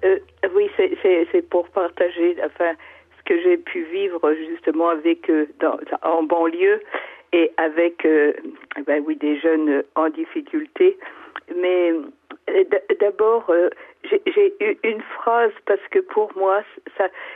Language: French